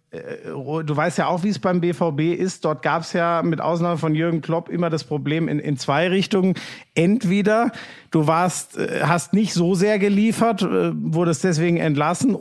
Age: 50-69